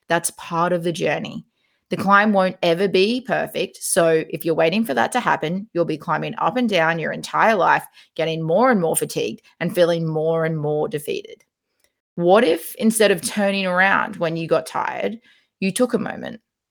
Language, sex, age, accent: English, female, 30-49, Australian